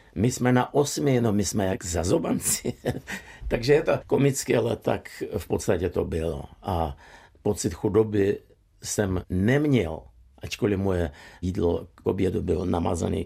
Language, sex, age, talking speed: Czech, male, 50-69, 140 wpm